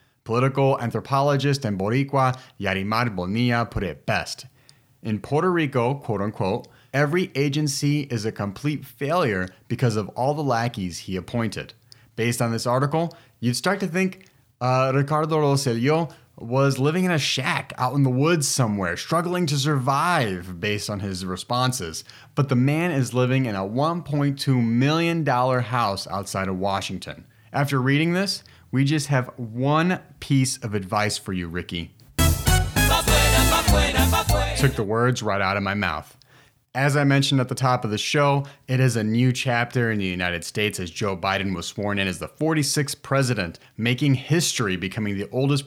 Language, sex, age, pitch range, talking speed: English, male, 30-49, 105-140 Hz, 160 wpm